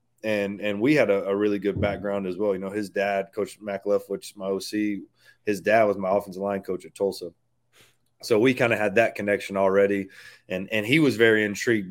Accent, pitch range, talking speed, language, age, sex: American, 95-110 Hz, 220 wpm, English, 30-49, male